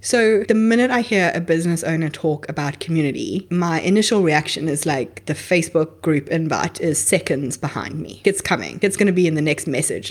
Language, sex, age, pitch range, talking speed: English, female, 20-39, 160-200 Hz, 200 wpm